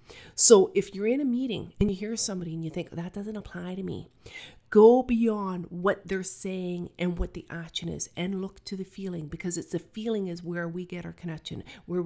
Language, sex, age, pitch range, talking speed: English, female, 40-59, 170-200 Hz, 220 wpm